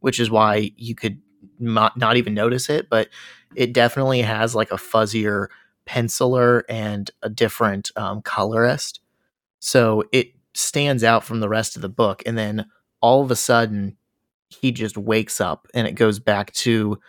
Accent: American